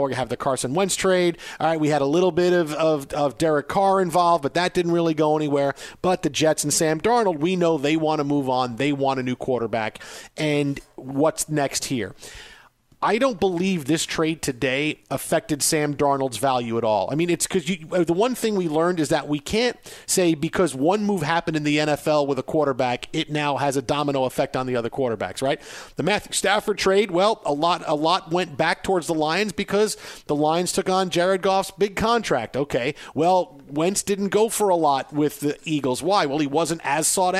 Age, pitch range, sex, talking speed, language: 40-59, 145-185 Hz, male, 215 wpm, English